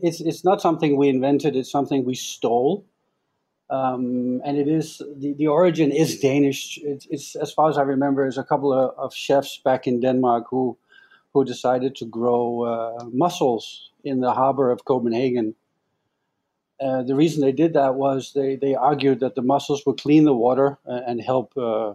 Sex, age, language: male, 50-69, English